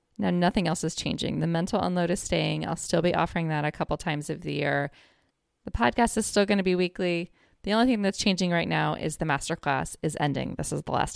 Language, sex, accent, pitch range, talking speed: English, female, American, 155-190 Hz, 240 wpm